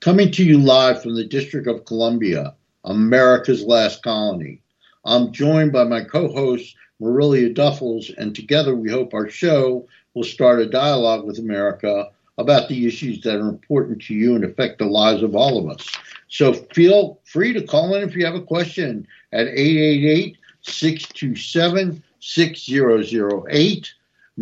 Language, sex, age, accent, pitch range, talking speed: English, male, 60-79, American, 125-155 Hz, 145 wpm